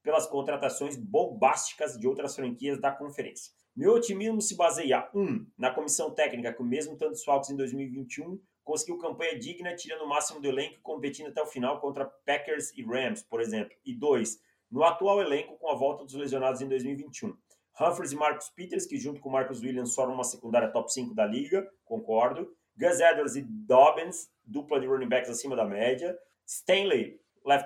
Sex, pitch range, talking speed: male, 130-175 Hz, 180 wpm